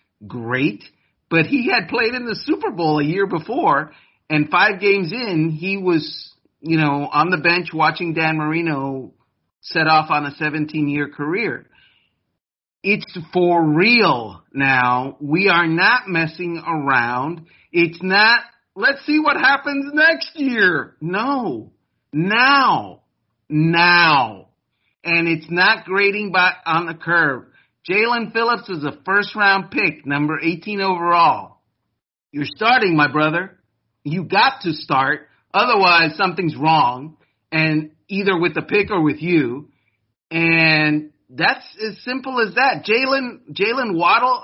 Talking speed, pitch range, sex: 130 wpm, 155-205 Hz, male